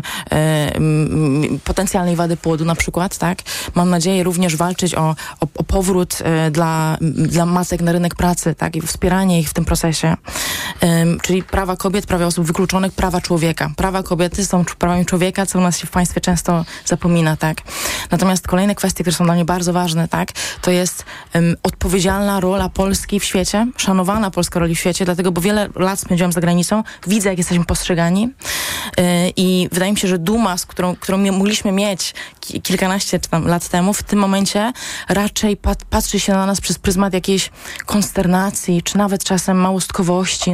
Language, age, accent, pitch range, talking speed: Polish, 20-39, native, 170-190 Hz, 175 wpm